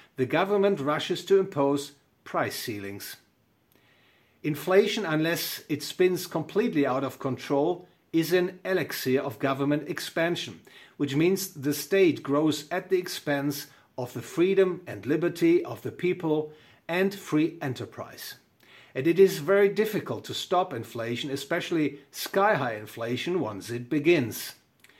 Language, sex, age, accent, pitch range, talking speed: English, male, 50-69, German, 140-185 Hz, 130 wpm